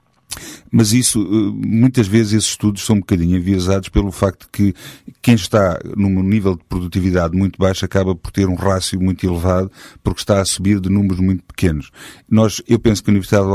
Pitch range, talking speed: 90-105 Hz, 190 wpm